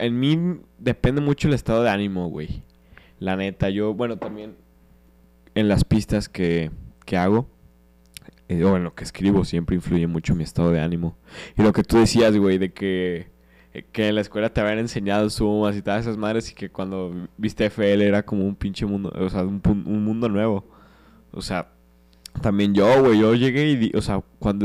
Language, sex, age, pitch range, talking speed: Spanish, male, 20-39, 90-115 Hz, 195 wpm